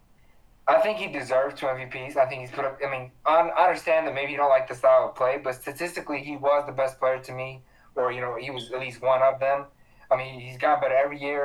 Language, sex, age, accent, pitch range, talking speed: English, male, 20-39, American, 130-155 Hz, 260 wpm